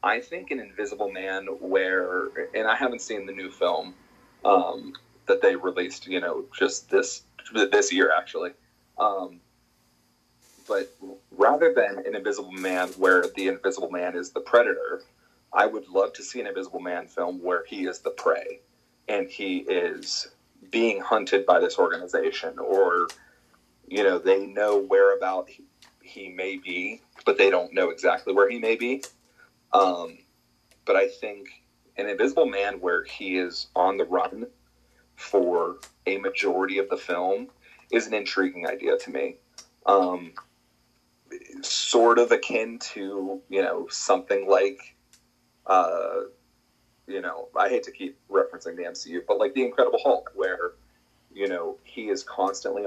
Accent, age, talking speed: American, 30-49, 155 wpm